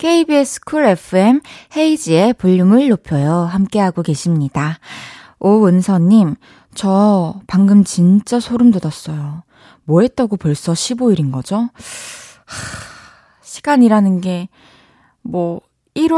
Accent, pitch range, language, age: native, 170-240 Hz, Korean, 20-39